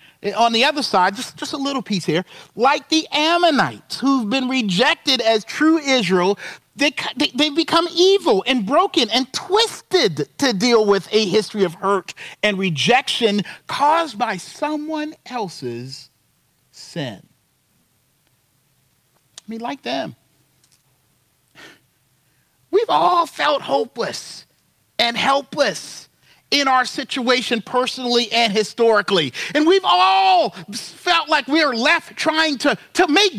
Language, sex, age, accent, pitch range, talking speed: English, male, 40-59, American, 220-345 Hz, 120 wpm